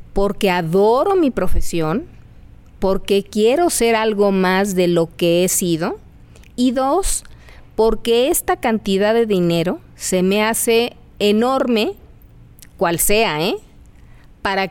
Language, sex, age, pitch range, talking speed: Spanish, female, 40-59, 180-240 Hz, 120 wpm